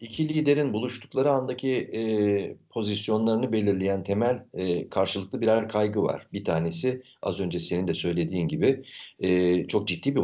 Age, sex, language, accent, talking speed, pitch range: 50-69, male, Turkish, native, 145 wpm, 90-120 Hz